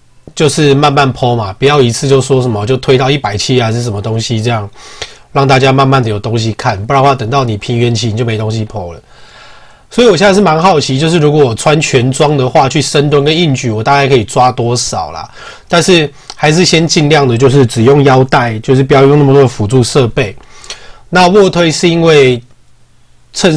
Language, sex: Chinese, male